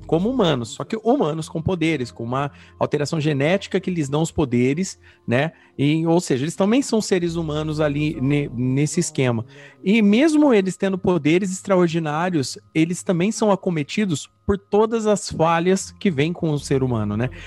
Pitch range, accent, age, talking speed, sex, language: 135-185 Hz, Brazilian, 40-59, 165 wpm, male, Portuguese